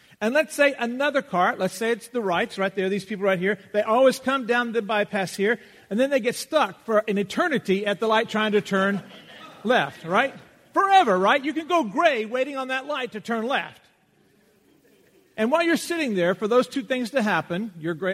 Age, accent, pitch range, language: 50-69, American, 185-250 Hz, English